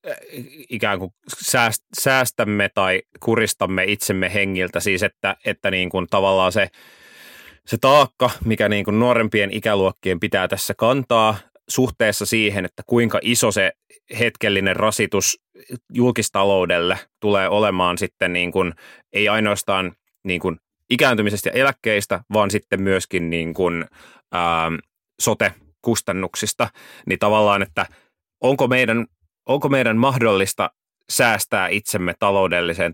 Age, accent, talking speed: 30-49, native, 115 wpm